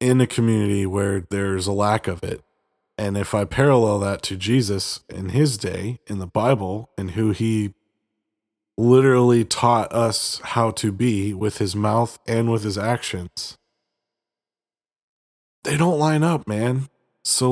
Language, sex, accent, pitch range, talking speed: English, male, American, 105-135 Hz, 150 wpm